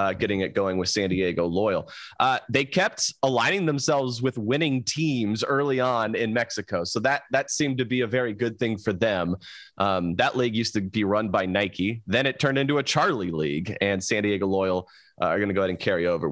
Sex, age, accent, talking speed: male, 30-49, American, 225 wpm